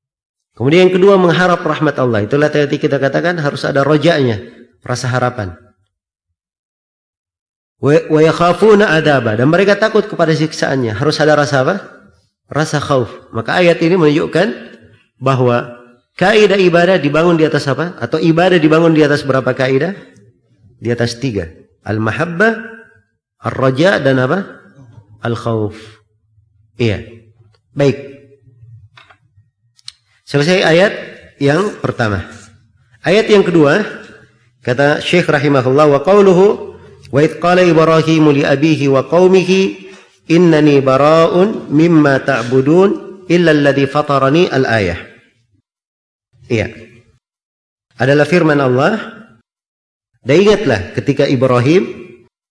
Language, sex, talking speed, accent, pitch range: Indonesian, male, 100 wpm, native, 115-160 Hz